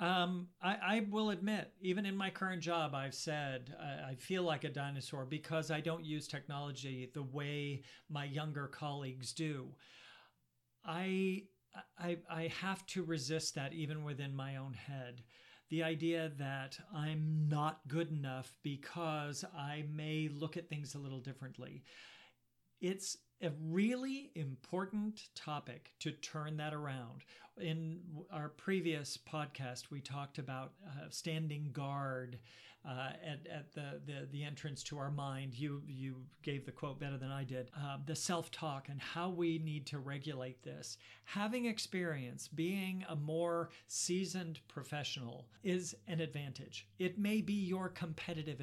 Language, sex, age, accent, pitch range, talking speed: English, male, 50-69, American, 135-170 Hz, 150 wpm